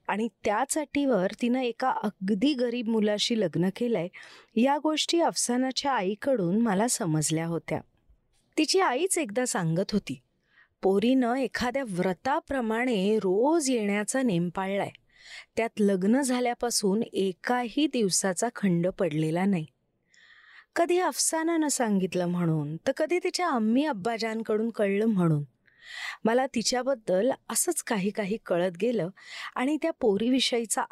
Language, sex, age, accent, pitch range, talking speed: Marathi, female, 30-49, native, 190-275 Hz, 115 wpm